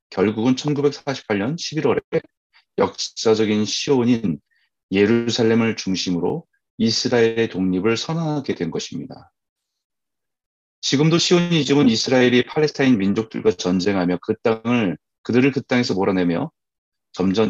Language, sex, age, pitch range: Korean, male, 30-49, 95-135 Hz